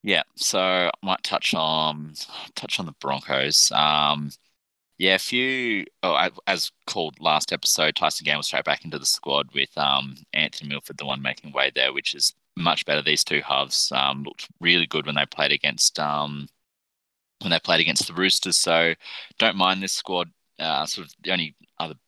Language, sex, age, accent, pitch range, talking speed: English, male, 20-39, Australian, 70-80 Hz, 190 wpm